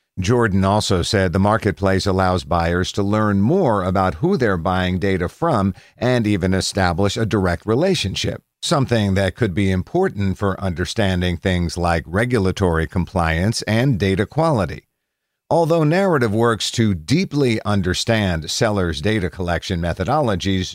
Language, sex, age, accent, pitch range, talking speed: English, male, 50-69, American, 90-115 Hz, 135 wpm